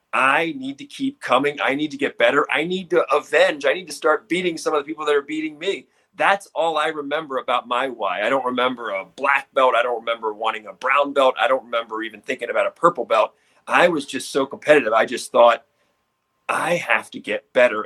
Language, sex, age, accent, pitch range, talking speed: English, male, 30-49, American, 125-180 Hz, 230 wpm